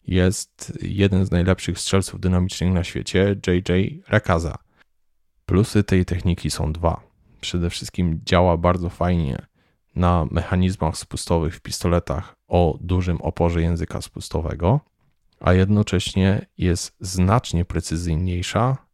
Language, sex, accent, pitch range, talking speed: Polish, male, native, 85-100 Hz, 110 wpm